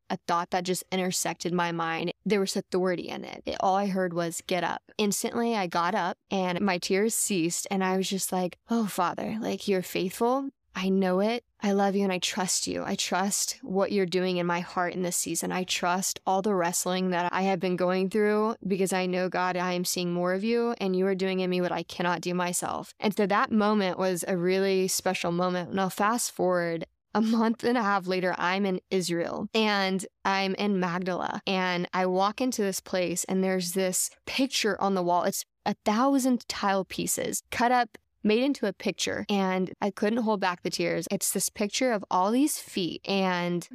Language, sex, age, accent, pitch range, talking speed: English, female, 10-29, American, 180-205 Hz, 210 wpm